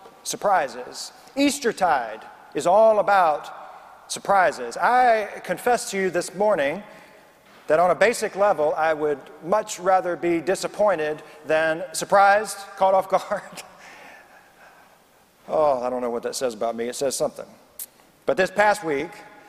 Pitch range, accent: 160-210 Hz, American